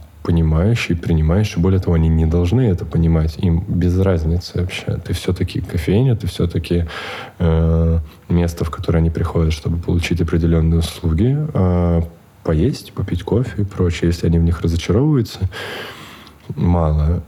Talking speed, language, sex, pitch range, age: 140 wpm, Russian, male, 85-100 Hz, 20-39